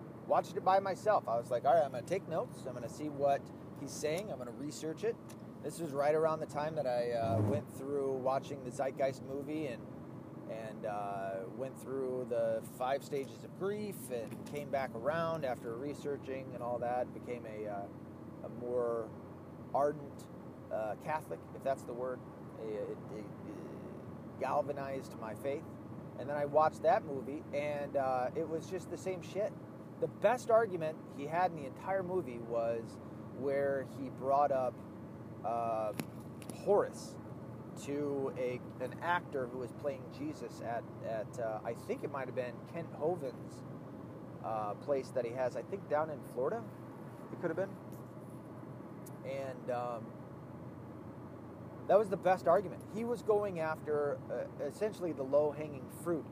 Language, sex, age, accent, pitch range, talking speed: English, male, 30-49, American, 120-155 Hz, 165 wpm